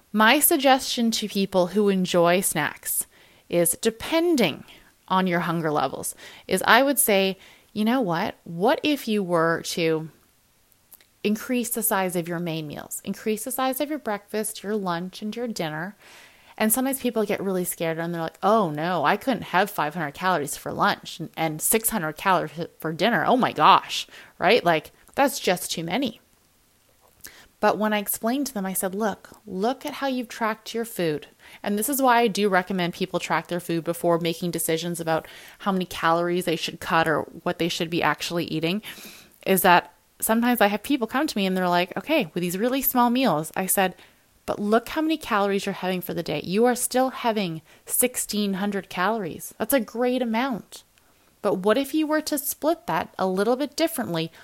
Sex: female